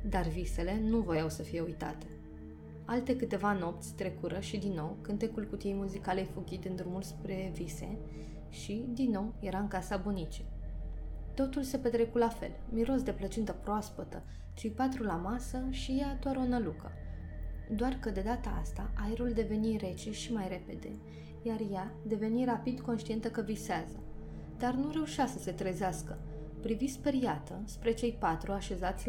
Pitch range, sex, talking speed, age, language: 155-235 Hz, female, 160 wpm, 20-39, Romanian